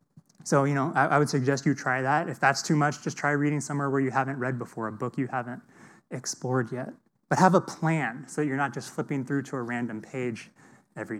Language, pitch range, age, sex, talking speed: English, 130-160 Hz, 20-39, male, 235 wpm